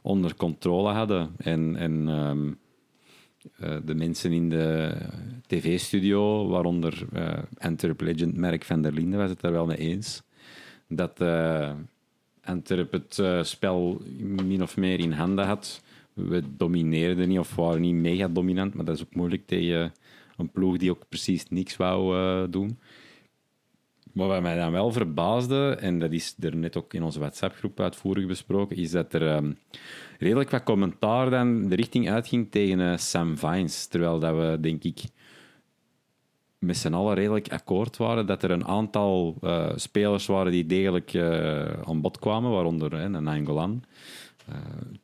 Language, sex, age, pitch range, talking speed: Dutch, male, 40-59, 85-100 Hz, 160 wpm